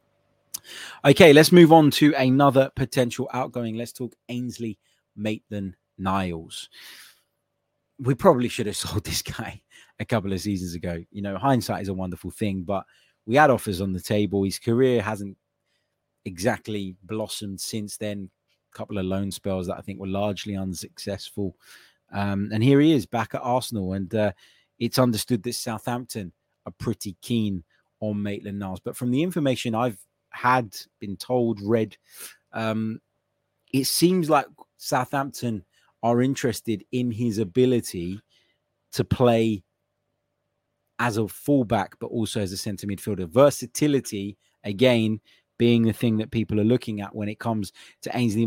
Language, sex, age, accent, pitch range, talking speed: English, male, 20-39, British, 100-125 Hz, 150 wpm